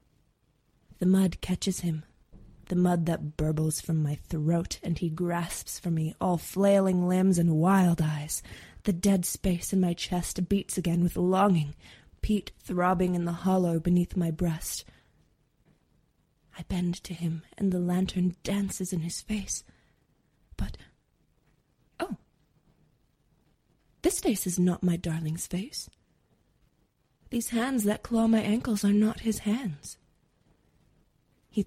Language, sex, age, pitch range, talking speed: English, female, 20-39, 170-200 Hz, 135 wpm